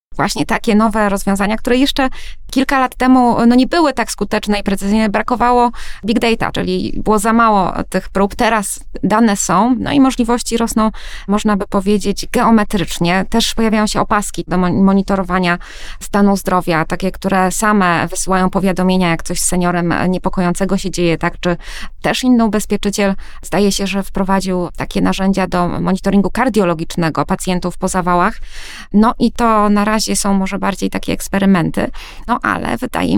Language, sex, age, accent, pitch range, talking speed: Polish, female, 20-39, native, 185-225 Hz, 155 wpm